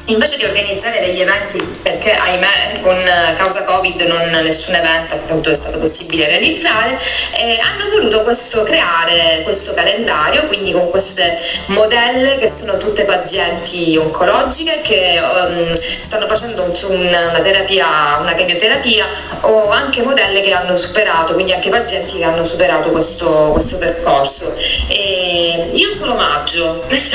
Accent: native